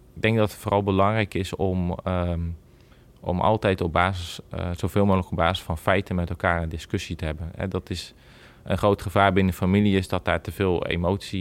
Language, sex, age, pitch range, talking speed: Dutch, male, 20-39, 85-95 Hz, 215 wpm